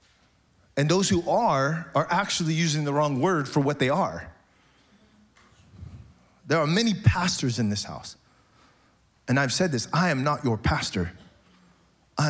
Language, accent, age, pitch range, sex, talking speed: English, American, 30-49, 125-165 Hz, male, 150 wpm